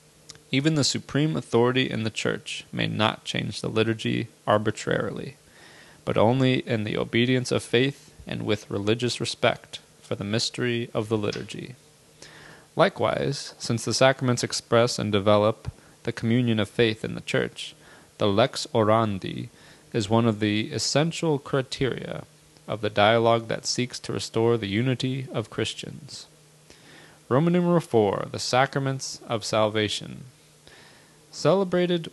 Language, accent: English, American